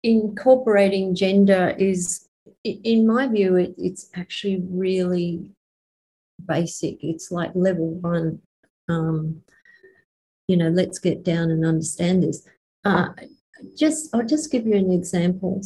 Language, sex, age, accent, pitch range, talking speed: English, female, 40-59, Australian, 170-195 Hz, 115 wpm